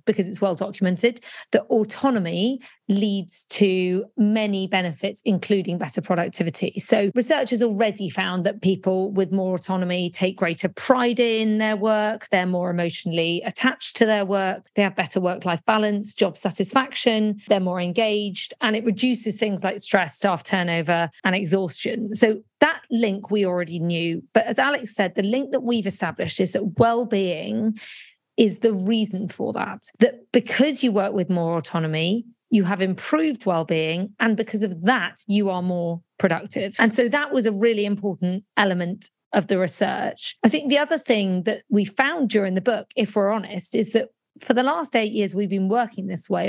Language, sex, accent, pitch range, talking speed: English, female, British, 185-230 Hz, 175 wpm